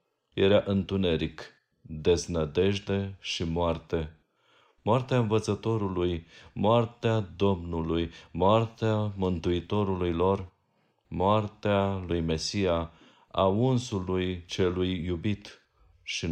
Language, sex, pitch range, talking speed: Romanian, male, 85-105 Hz, 75 wpm